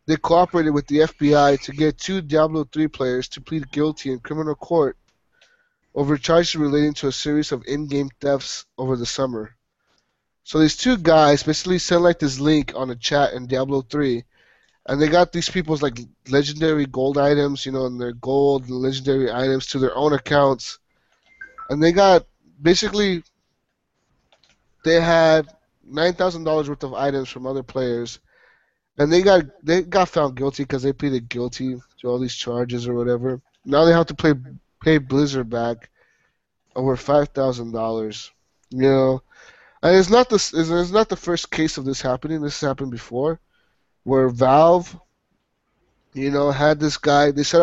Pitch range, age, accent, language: 130-160 Hz, 20-39, American, English